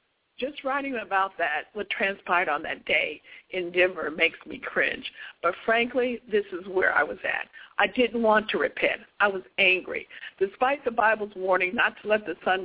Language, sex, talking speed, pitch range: English, female, 185 wpm, 185-255 Hz